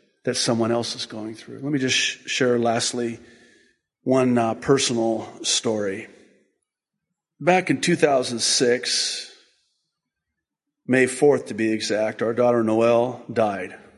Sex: male